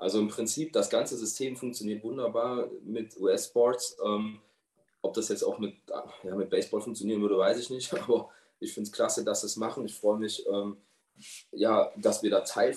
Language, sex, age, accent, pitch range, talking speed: German, male, 20-39, German, 105-135 Hz, 180 wpm